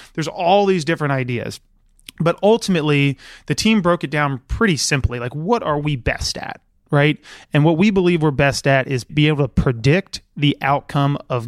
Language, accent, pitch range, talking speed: English, American, 145-185 Hz, 190 wpm